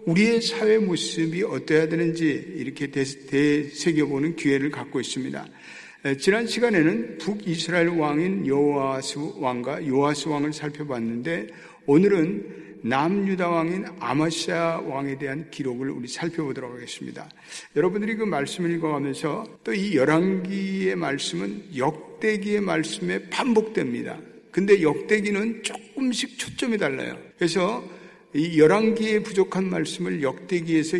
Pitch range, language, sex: 150-195 Hz, Korean, male